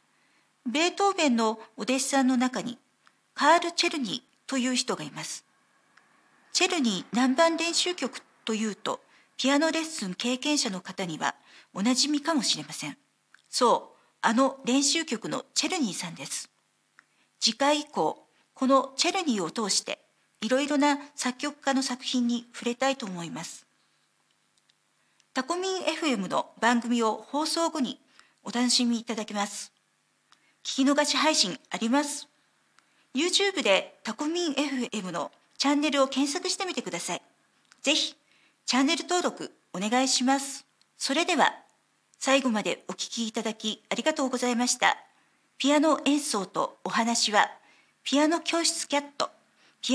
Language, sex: Japanese, female